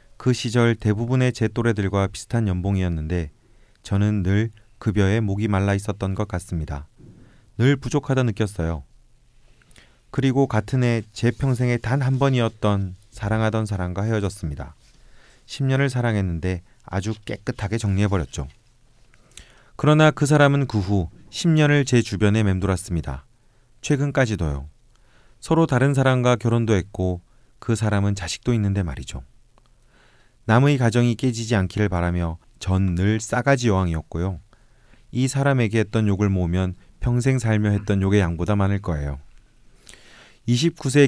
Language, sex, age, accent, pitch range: Korean, male, 30-49, native, 95-125 Hz